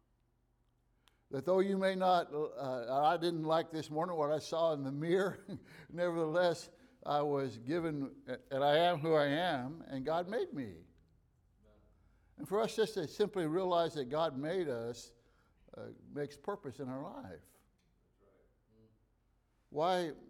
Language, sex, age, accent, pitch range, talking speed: English, male, 60-79, American, 140-190 Hz, 145 wpm